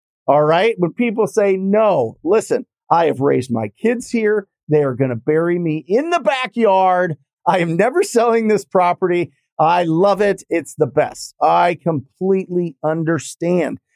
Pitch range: 155-195 Hz